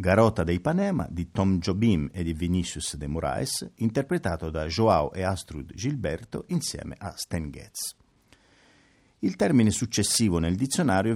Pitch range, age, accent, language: 85-125 Hz, 50-69, native, Italian